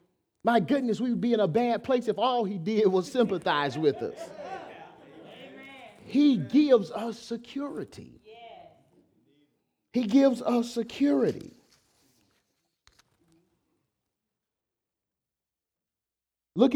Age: 40-59